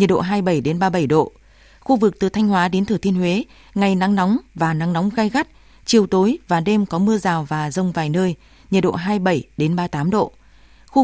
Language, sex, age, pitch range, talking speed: Vietnamese, female, 20-39, 170-215 Hz, 225 wpm